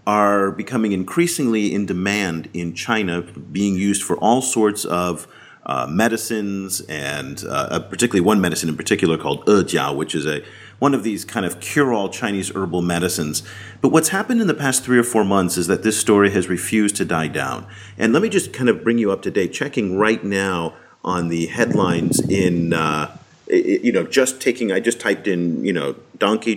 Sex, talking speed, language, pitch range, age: male, 195 wpm, English, 90-115 Hz, 40-59